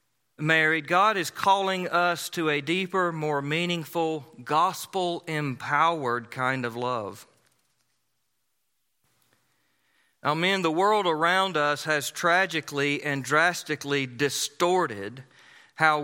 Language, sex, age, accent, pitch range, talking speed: English, male, 40-59, American, 130-165 Hz, 100 wpm